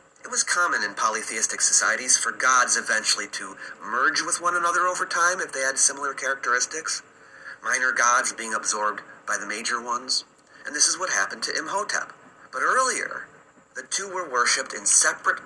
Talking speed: 170 wpm